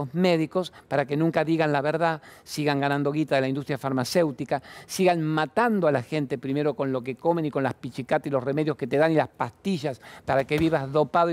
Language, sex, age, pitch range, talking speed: Spanish, male, 50-69, 140-175 Hz, 215 wpm